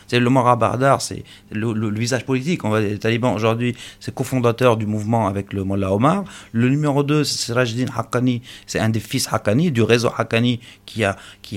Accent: French